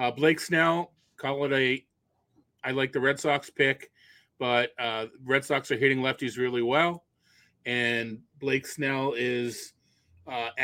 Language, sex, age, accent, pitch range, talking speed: English, male, 30-49, American, 125-160 Hz, 150 wpm